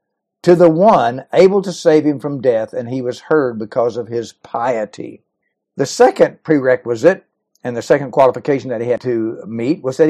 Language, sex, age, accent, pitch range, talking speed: English, male, 60-79, American, 125-160 Hz, 185 wpm